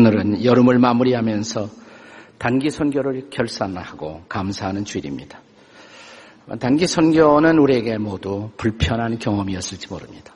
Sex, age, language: male, 50-69, Korean